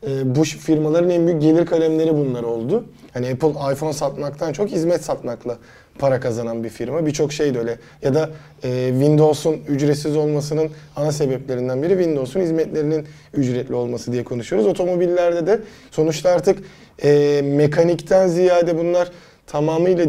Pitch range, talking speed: 130-160 Hz, 140 wpm